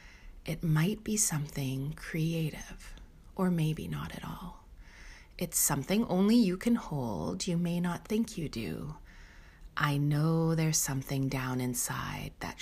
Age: 30-49